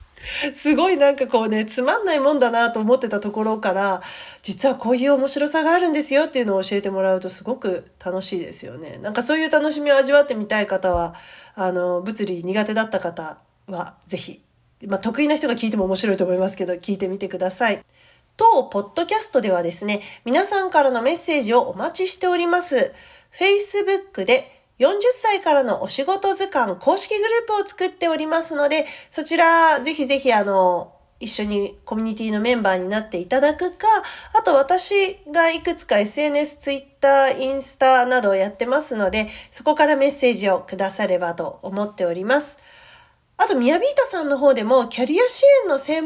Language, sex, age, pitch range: Japanese, female, 40-59, 205-335 Hz